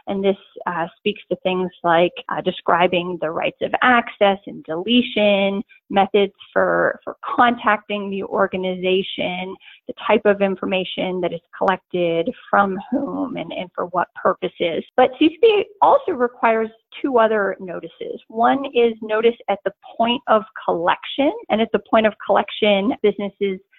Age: 30-49